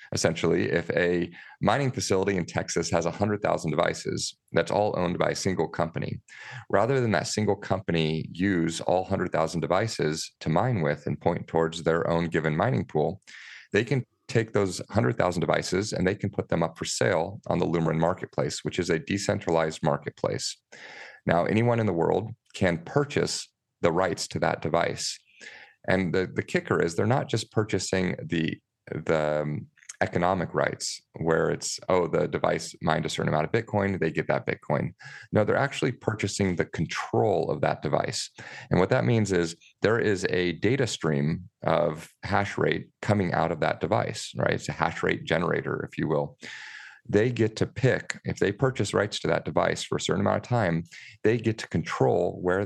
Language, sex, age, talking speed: English, male, 40-59, 180 wpm